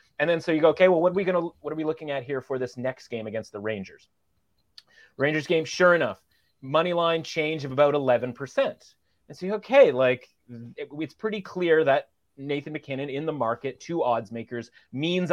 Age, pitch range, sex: 30-49, 125-170 Hz, male